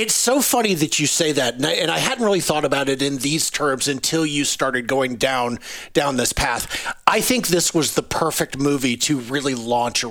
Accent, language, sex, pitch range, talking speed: American, English, male, 130-170 Hz, 215 wpm